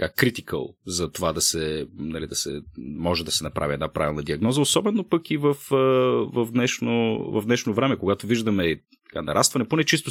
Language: Bulgarian